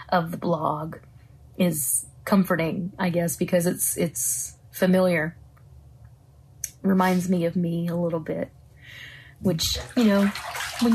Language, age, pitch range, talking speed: English, 30-49, 165-190 Hz, 120 wpm